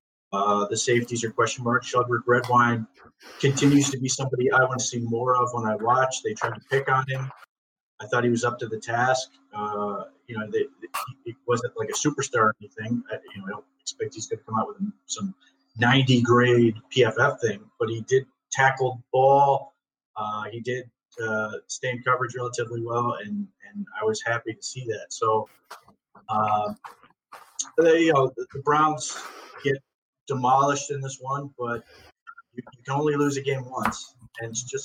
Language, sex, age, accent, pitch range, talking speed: English, male, 30-49, American, 120-145 Hz, 185 wpm